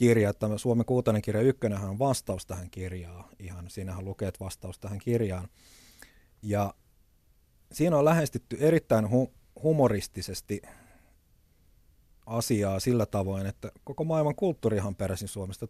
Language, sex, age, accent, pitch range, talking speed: Finnish, male, 30-49, native, 95-120 Hz, 115 wpm